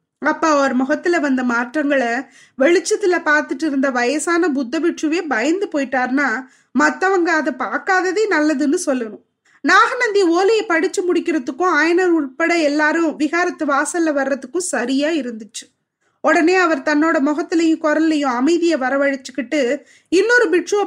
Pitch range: 290-370 Hz